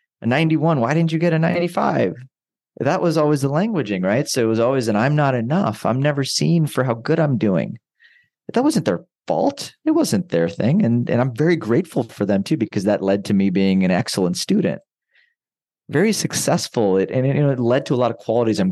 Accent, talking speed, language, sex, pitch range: American, 215 wpm, English, male, 95-130 Hz